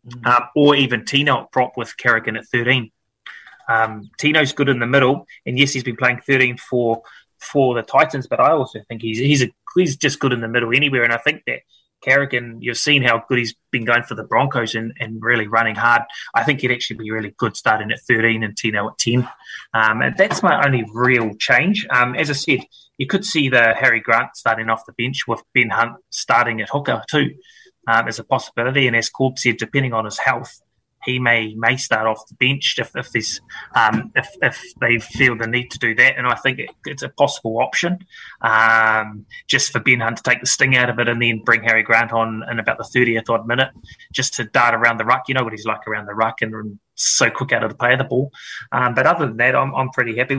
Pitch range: 115-130 Hz